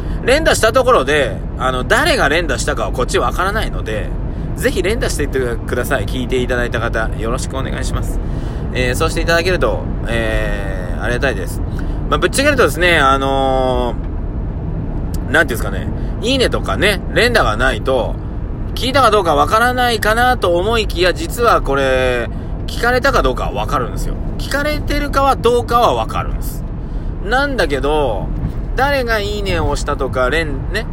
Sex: male